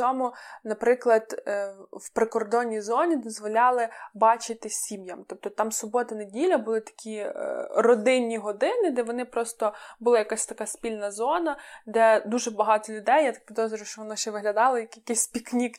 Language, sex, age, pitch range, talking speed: Ukrainian, female, 20-39, 210-245 Hz, 145 wpm